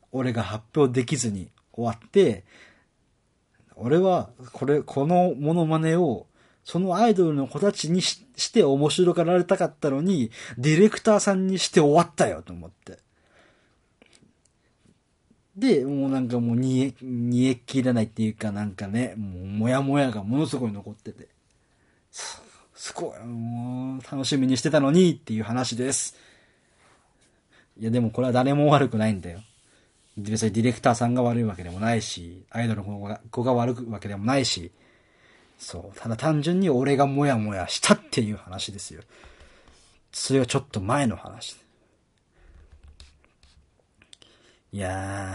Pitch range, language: 105-145 Hz, Japanese